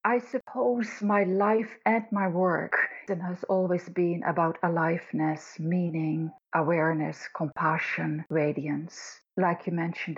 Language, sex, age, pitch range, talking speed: English, female, 50-69, 165-200 Hz, 110 wpm